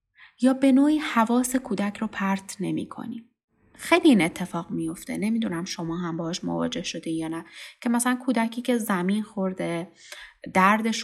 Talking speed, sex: 145 wpm, female